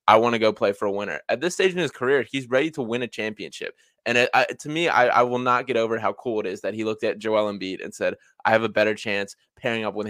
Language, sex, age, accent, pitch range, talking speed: English, male, 20-39, American, 105-130 Hz, 305 wpm